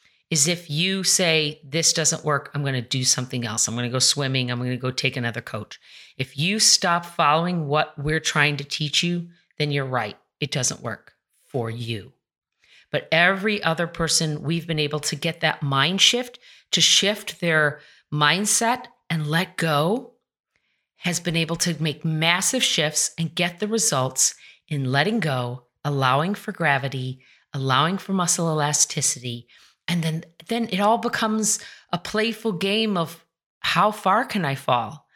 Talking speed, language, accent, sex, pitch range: 165 wpm, English, American, female, 140-190 Hz